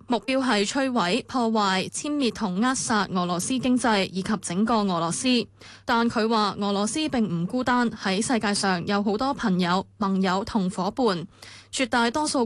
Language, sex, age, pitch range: Chinese, female, 20-39, 200-255 Hz